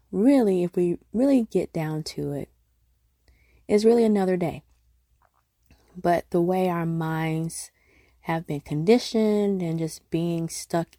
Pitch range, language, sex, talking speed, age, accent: 135-185 Hz, English, female, 130 wpm, 20-39, American